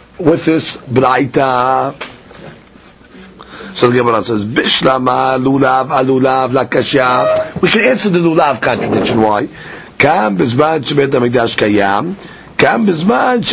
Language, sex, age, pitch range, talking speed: English, male, 50-69, 125-165 Hz, 110 wpm